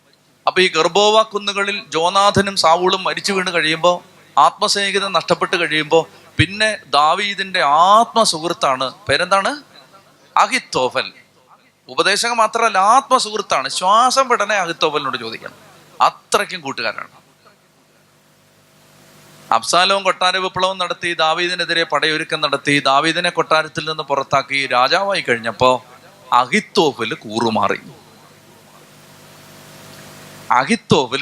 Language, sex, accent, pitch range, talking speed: Malayalam, male, native, 150-205 Hz, 80 wpm